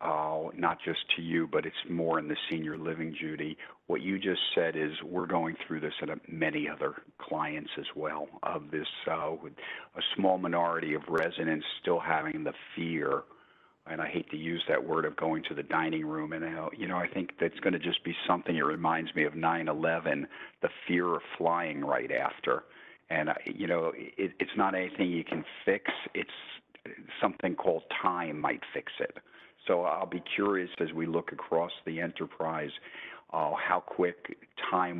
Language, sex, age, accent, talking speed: English, male, 50-69, American, 185 wpm